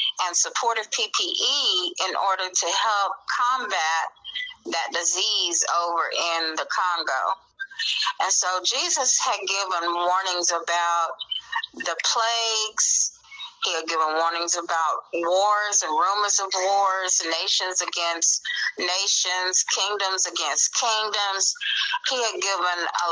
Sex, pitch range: female, 180-230 Hz